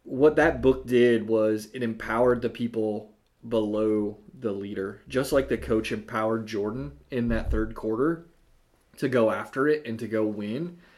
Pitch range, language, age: 110-125 Hz, English, 30-49